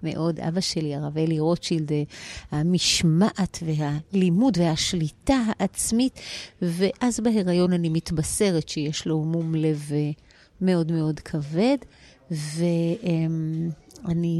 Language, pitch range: Hebrew, 165-215 Hz